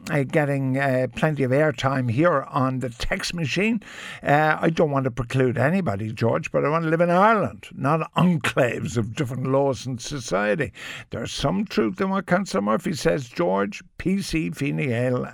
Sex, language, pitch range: male, English, 120-165 Hz